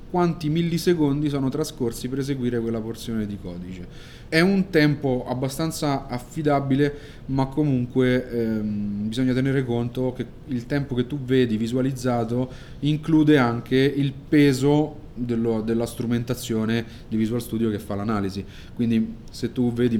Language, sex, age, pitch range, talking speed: Italian, male, 30-49, 110-135 Hz, 135 wpm